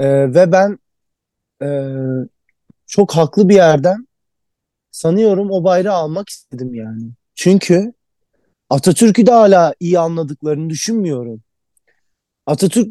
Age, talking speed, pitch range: 30-49, 95 wpm, 140-195 Hz